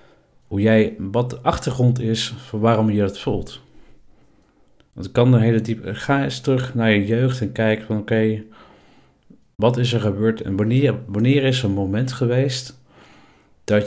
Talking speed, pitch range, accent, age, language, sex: 175 wpm, 100-125 Hz, Dutch, 50-69, Dutch, male